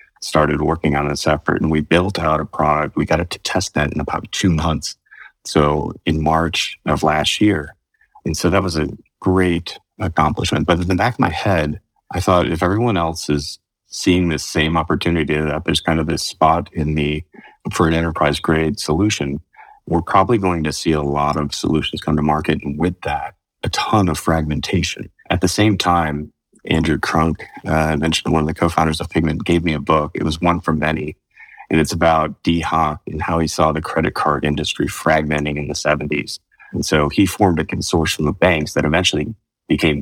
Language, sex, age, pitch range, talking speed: English, male, 30-49, 75-85 Hz, 200 wpm